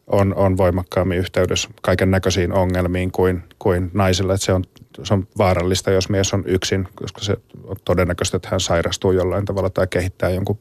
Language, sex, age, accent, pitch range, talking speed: Finnish, male, 30-49, native, 95-110 Hz, 170 wpm